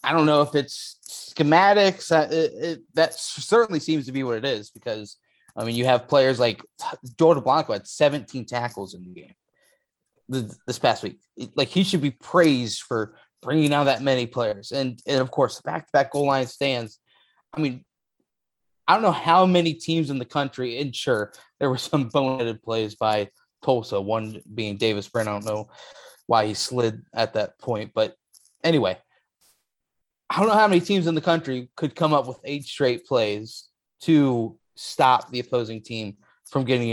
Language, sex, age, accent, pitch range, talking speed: English, male, 20-39, American, 120-165 Hz, 190 wpm